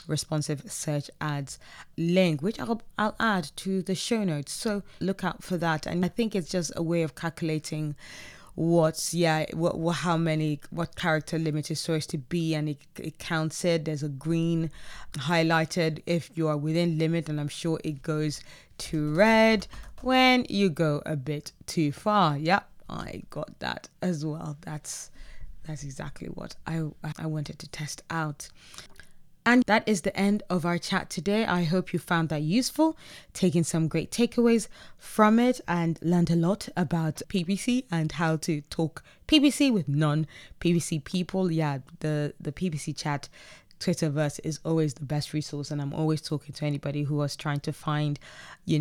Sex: female